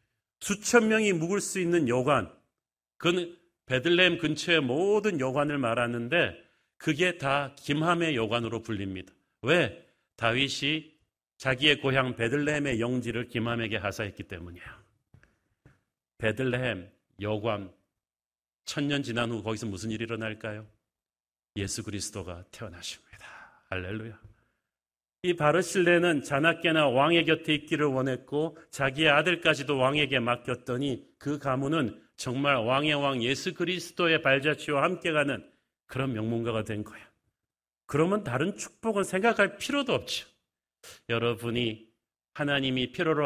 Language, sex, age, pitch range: Korean, male, 40-59, 110-150 Hz